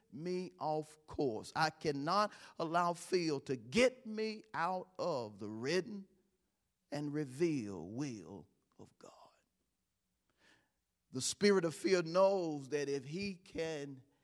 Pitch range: 130-180 Hz